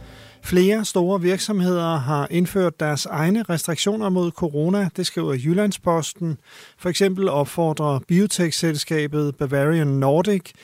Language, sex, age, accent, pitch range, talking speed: Danish, male, 40-59, native, 150-180 Hz, 105 wpm